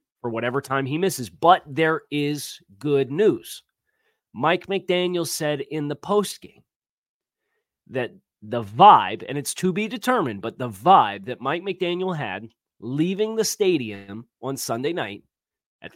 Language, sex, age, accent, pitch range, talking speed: English, male, 30-49, American, 125-175 Hz, 145 wpm